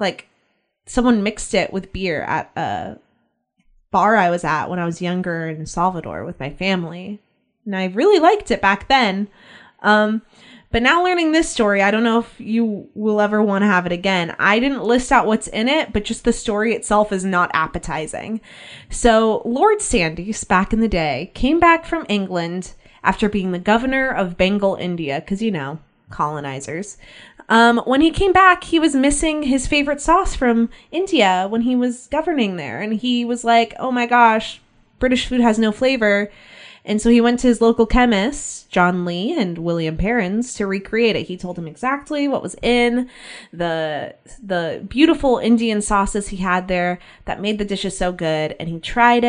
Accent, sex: American, female